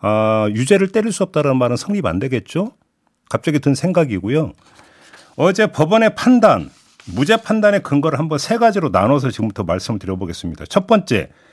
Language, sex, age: Korean, male, 50-69